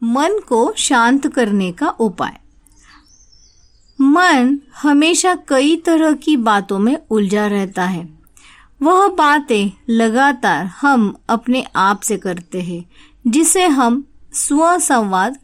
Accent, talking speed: native, 115 wpm